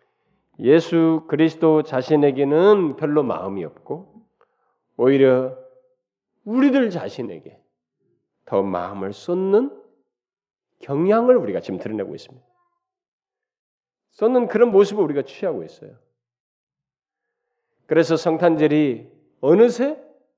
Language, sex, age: Korean, male, 40-59